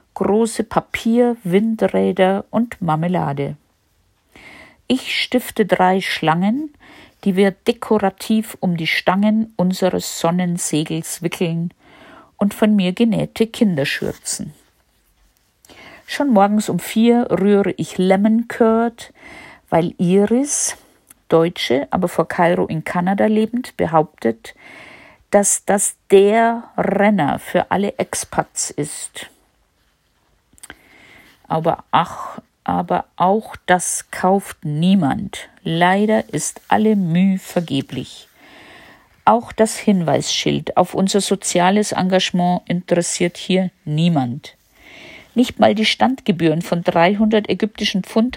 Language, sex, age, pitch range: German, female, 50-69, 170-220 Hz